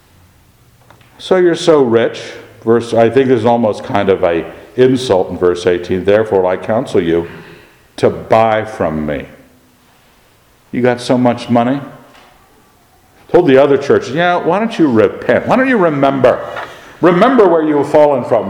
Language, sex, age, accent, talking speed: English, male, 50-69, American, 160 wpm